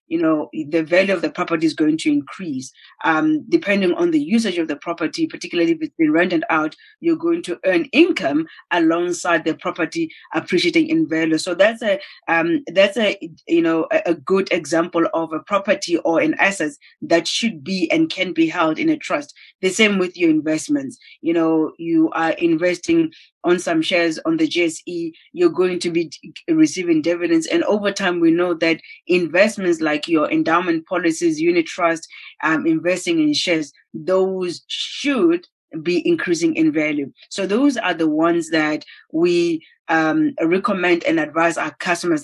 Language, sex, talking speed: English, female, 170 wpm